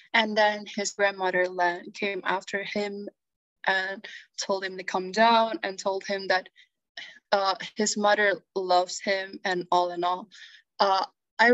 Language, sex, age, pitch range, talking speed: Indonesian, female, 10-29, 185-210 Hz, 145 wpm